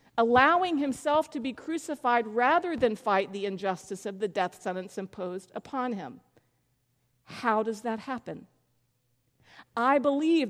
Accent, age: American, 50-69